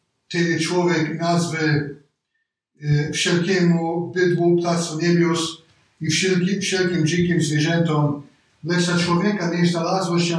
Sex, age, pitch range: male, 50-69, 150-175 Hz